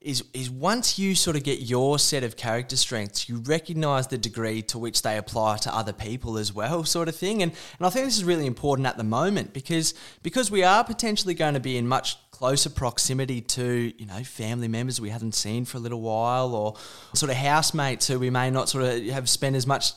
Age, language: 20-39, English